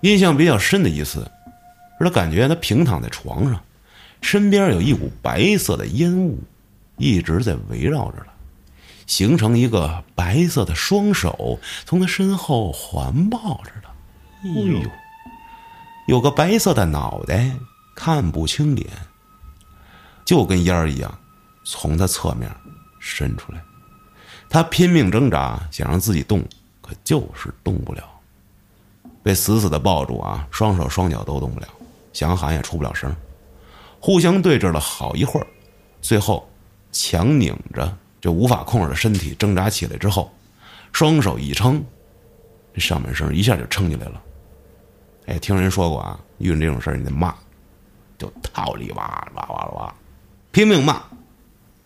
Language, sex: Chinese, male